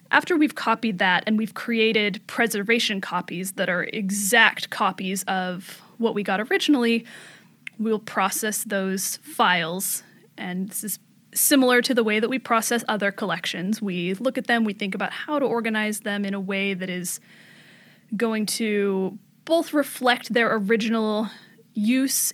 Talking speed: 155 wpm